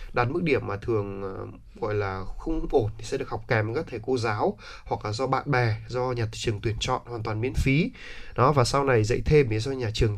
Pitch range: 110-135 Hz